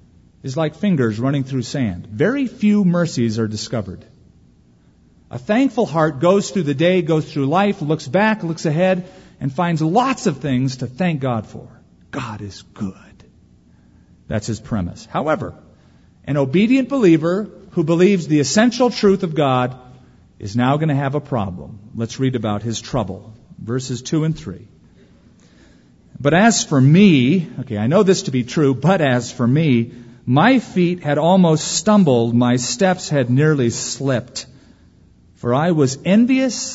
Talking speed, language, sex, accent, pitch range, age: 155 wpm, English, male, American, 120-185 Hz, 40-59